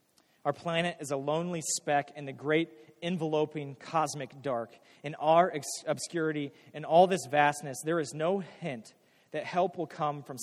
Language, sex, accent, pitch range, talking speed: English, male, American, 125-155 Hz, 165 wpm